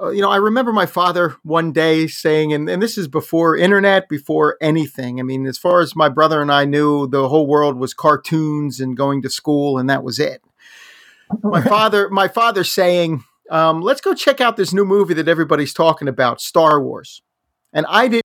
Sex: male